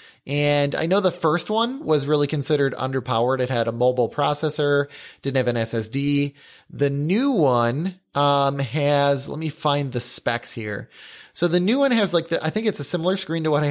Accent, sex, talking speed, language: American, male, 200 wpm, English